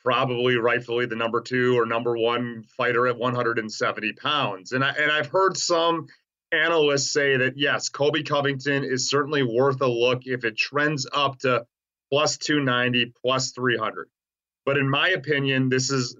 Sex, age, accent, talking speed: male, 30-49, American, 165 wpm